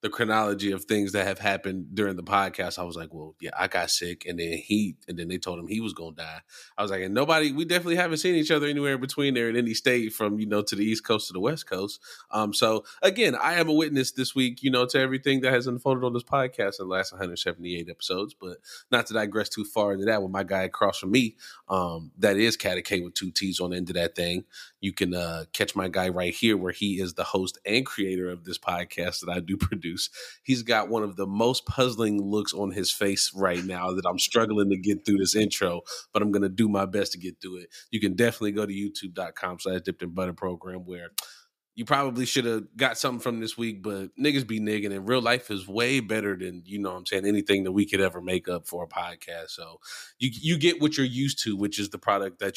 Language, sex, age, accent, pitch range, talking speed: English, male, 20-39, American, 90-115 Hz, 255 wpm